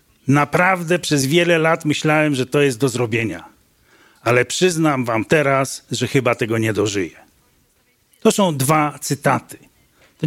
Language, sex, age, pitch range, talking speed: Polish, male, 40-59, 125-160 Hz, 140 wpm